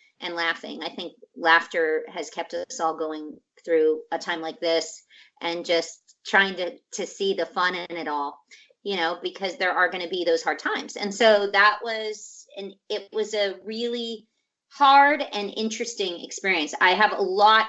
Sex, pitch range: female, 180-235 Hz